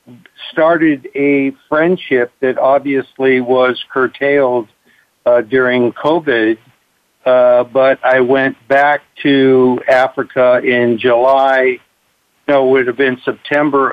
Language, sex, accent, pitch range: English, male, American, 130-150 Hz